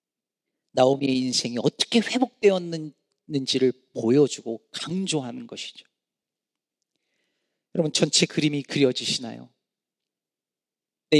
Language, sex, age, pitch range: Korean, male, 40-59, 140-205 Hz